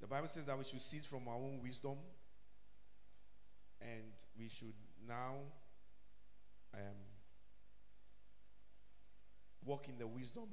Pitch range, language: 100-135 Hz, English